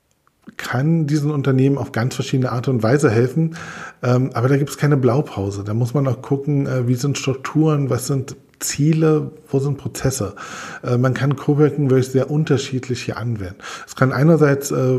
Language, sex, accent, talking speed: German, male, German, 165 wpm